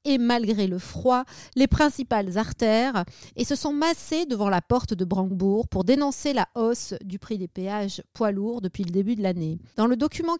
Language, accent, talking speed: French, French, 195 wpm